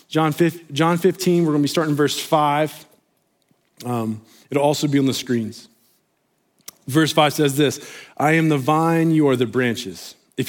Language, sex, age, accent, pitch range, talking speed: English, male, 30-49, American, 125-150 Hz, 170 wpm